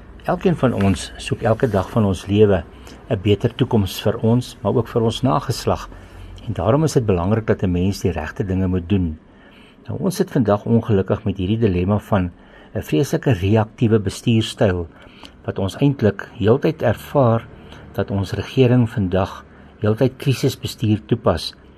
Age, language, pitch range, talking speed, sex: 60-79, English, 95-125 Hz, 155 wpm, male